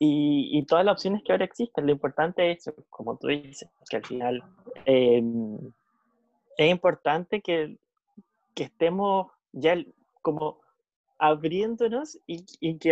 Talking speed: 135 wpm